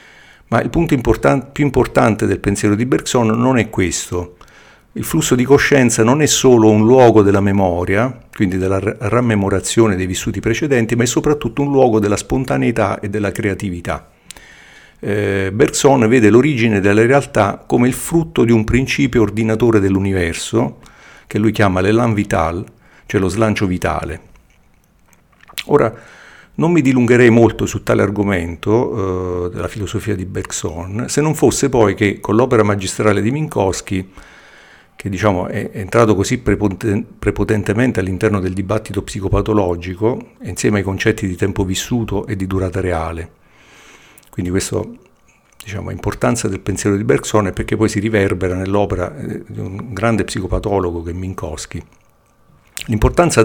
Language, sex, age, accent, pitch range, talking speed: Italian, male, 50-69, native, 95-120 Hz, 145 wpm